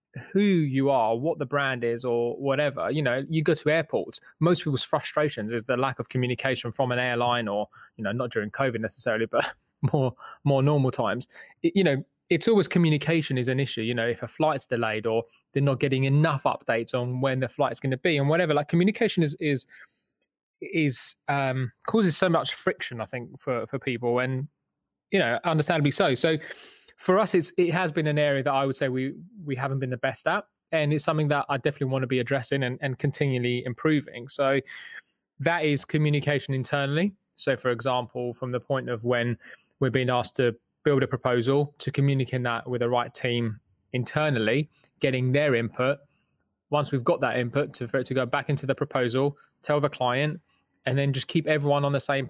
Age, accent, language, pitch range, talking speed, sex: 20-39, British, English, 125-150 Hz, 205 wpm, male